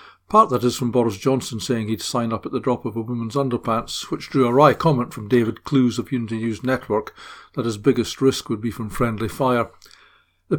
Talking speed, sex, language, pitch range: 220 wpm, male, English, 115-135 Hz